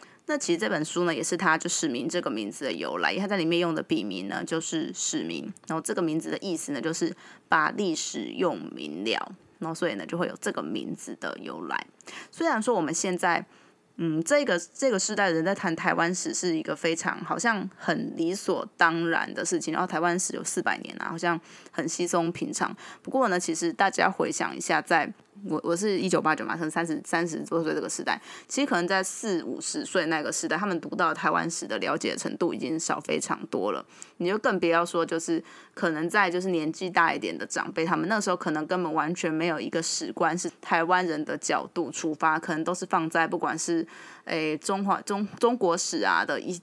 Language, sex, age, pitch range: Chinese, female, 20-39, 165-195 Hz